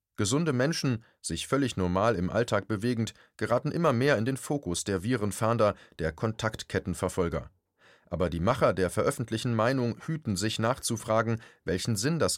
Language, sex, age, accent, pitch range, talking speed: German, male, 30-49, German, 95-125 Hz, 145 wpm